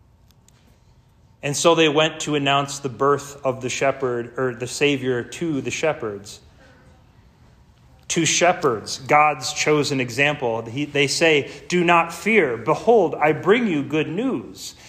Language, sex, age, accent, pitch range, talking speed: English, male, 30-49, American, 125-170 Hz, 135 wpm